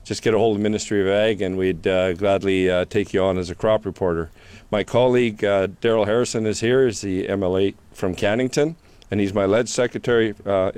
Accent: American